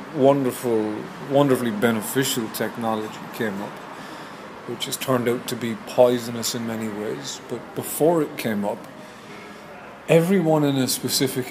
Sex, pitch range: male, 120-145 Hz